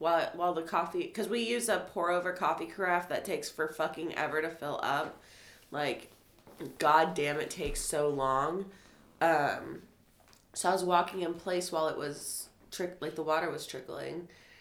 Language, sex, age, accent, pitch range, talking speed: English, female, 20-39, American, 155-190 Hz, 175 wpm